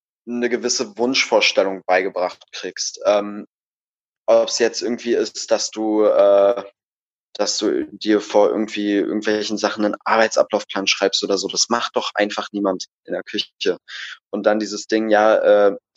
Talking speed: 150 wpm